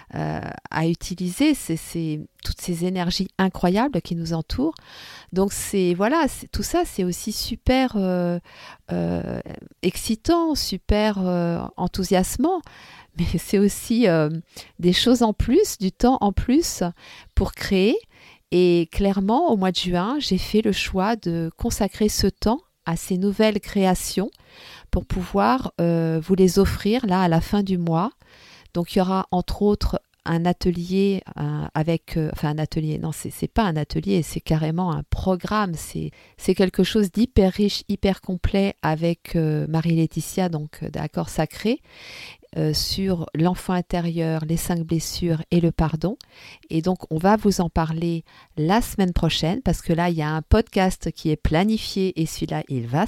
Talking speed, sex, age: 160 wpm, female, 50-69